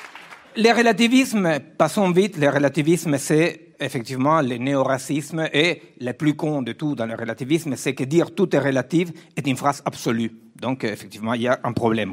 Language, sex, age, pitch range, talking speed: French, male, 50-69, 125-175 Hz, 185 wpm